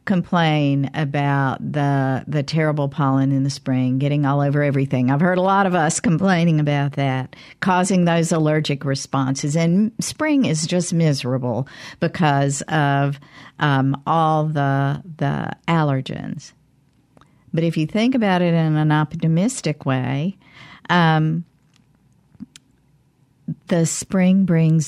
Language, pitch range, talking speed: English, 135-165 Hz, 125 wpm